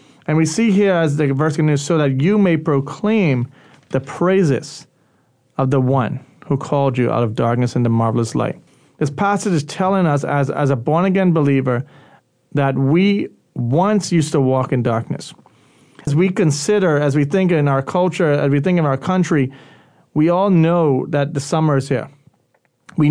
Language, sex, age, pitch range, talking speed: English, male, 30-49, 135-170 Hz, 180 wpm